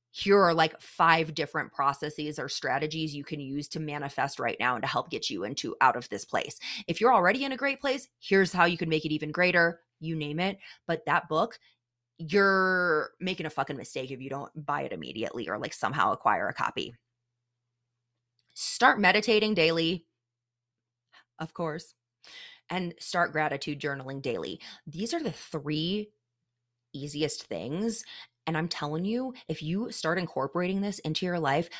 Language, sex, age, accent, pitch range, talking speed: English, female, 20-39, American, 145-190 Hz, 170 wpm